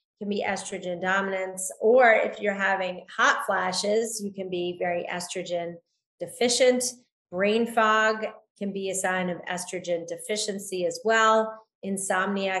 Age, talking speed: 30-49, 135 wpm